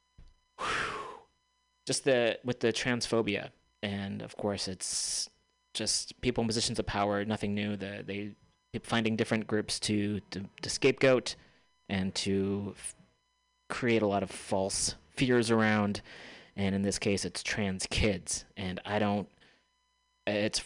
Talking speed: 130 wpm